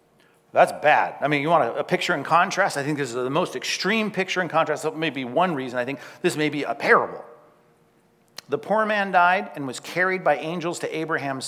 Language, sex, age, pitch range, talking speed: English, male, 50-69, 150-205 Hz, 230 wpm